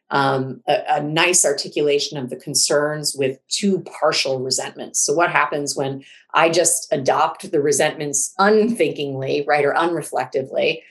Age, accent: 30-49, American